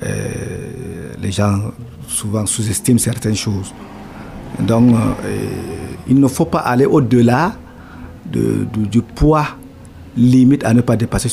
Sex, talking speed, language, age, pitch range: male, 105 wpm, French, 50-69, 105-130 Hz